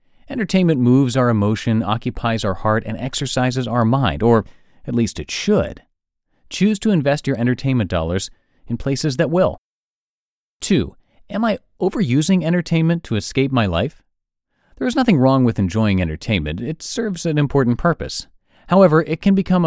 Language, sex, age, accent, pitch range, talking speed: English, male, 30-49, American, 110-160 Hz, 155 wpm